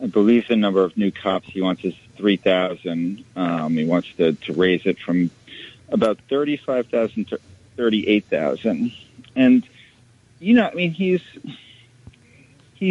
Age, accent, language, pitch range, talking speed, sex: 40-59, American, English, 95-125 Hz, 135 wpm, male